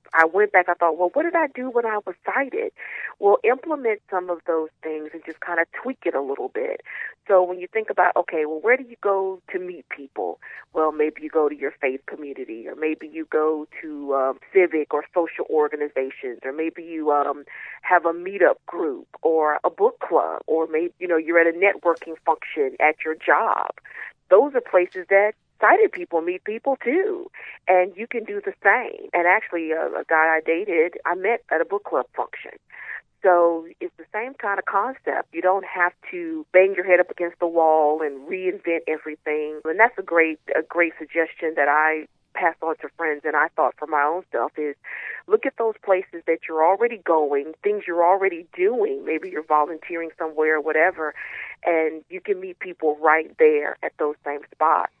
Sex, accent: female, American